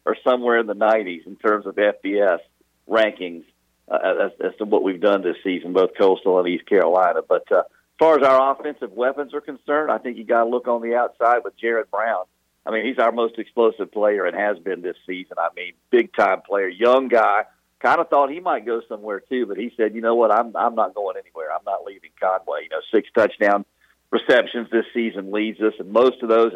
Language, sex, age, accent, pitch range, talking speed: English, male, 50-69, American, 105-125 Hz, 225 wpm